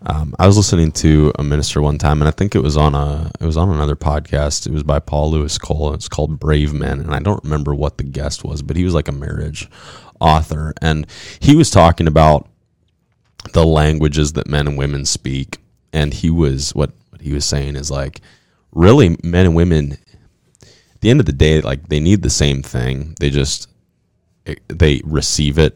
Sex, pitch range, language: male, 70-85 Hz, English